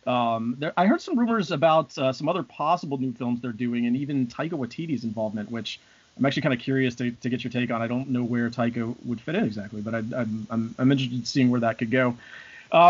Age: 30-49